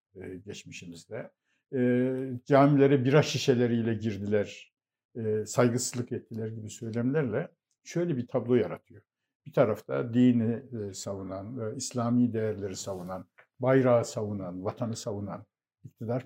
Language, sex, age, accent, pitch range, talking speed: Turkish, male, 60-79, native, 110-140 Hz, 90 wpm